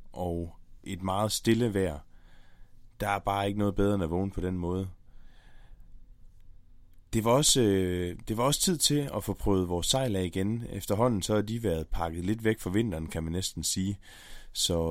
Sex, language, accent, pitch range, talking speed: male, Danish, native, 90-110 Hz, 195 wpm